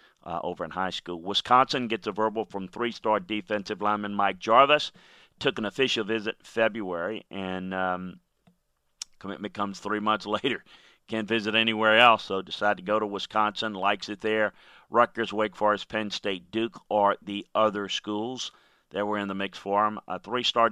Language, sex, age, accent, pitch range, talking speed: English, male, 40-59, American, 100-115 Hz, 175 wpm